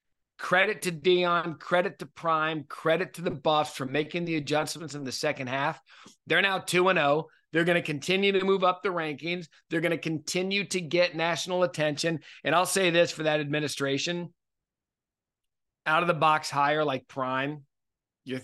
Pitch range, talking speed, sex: 130-175 Hz, 180 wpm, male